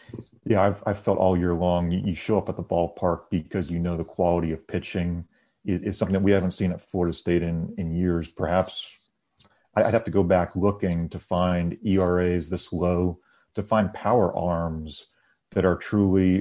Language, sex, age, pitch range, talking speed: English, male, 40-59, 90-100 Hz, 190 wpm